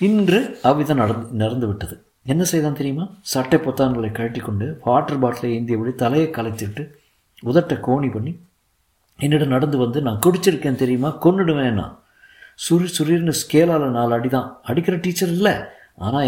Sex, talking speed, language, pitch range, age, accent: male, 120 wpm, Tamil, 105-140 Hz, 50-69, native